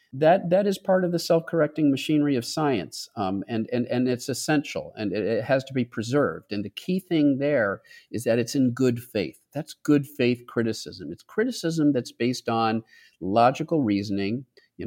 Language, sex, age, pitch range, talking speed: English, male, 50-69, 100-130 Hz, 185 wpm